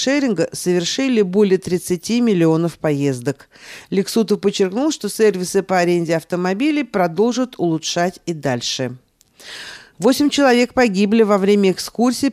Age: 50-69